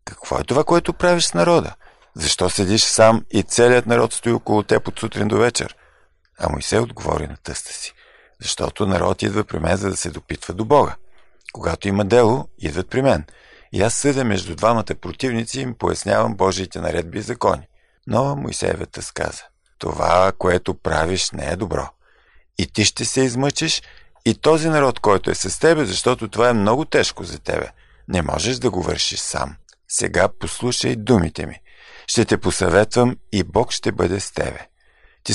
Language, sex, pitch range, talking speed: Bulgarian, male, 95-125 Hz, 180 wpm